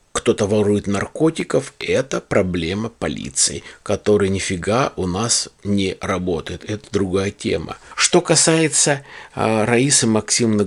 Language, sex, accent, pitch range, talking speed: Russian, male, native, 95-120 Hz, 110 wpm